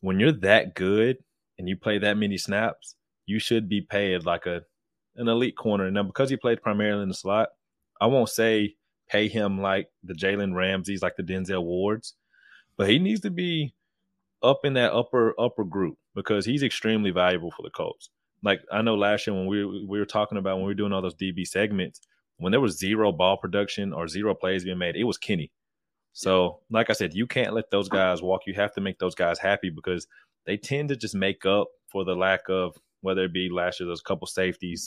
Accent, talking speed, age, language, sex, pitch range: American, 220 wpm, 20-39, English, male, 95-105 Hz